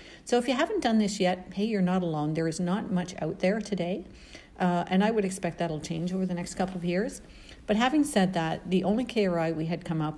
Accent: American